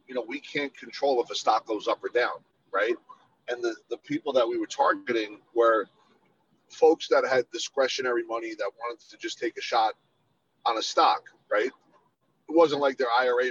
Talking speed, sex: 190 wpm, male